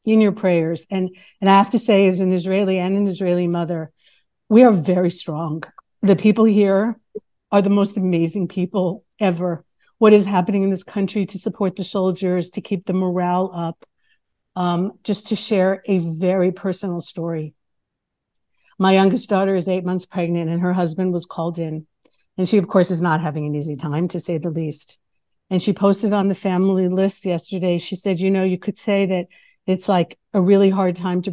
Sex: female